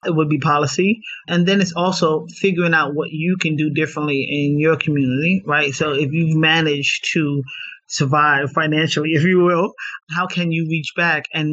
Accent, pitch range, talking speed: American, 150-175 Hz, 180 wpm